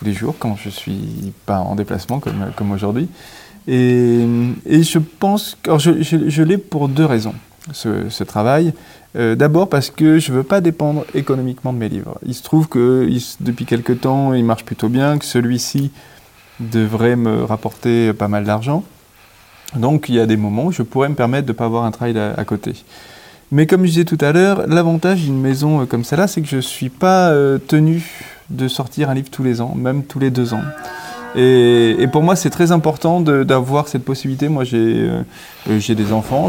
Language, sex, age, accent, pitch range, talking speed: French, male, 30-49, French, 115-155 Hz, 205 wpm